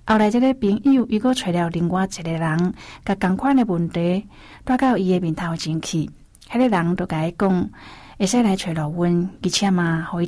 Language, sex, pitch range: Chinese, female, 175-215 Hz